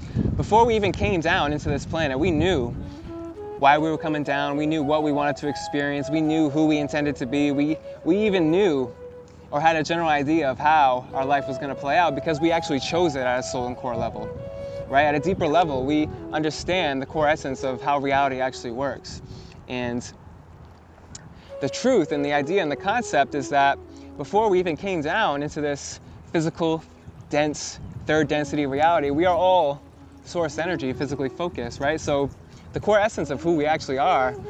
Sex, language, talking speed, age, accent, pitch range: male, English, 195 wpm, 20-39, American, 130-155 Hz